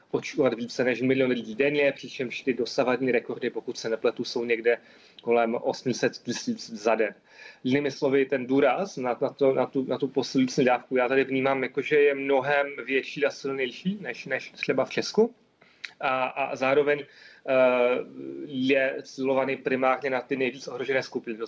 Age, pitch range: 30-49, 125-140 Hz